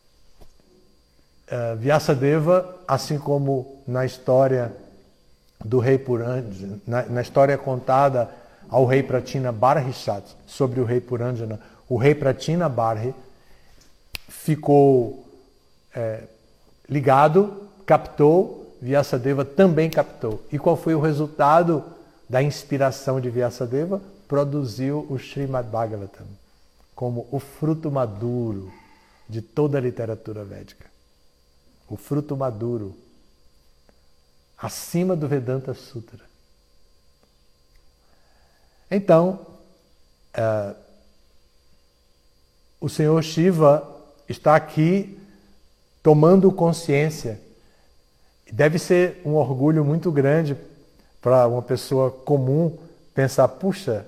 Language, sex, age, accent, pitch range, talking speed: Portuguese, male, 60-79, Brazilian, 100-150 Hz, 90 wpm